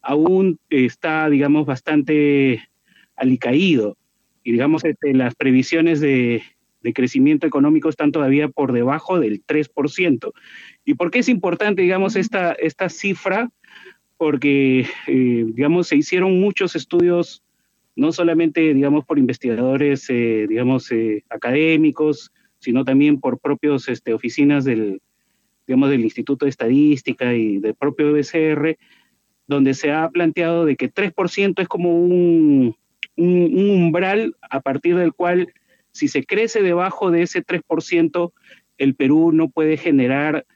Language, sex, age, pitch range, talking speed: Spanish, male, 30-49, 135-175 Hz, 135 wpm